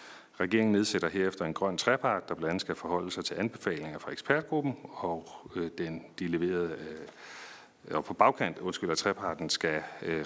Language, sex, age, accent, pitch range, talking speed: Danish, male, 40-59, native, 85-110 Hz, 160 wpm